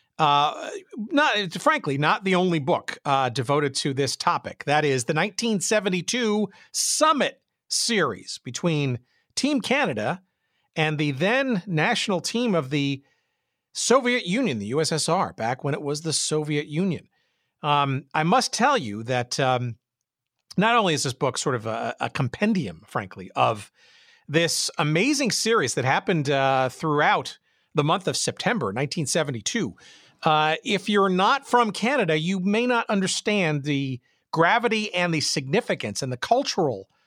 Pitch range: 140-200 Hz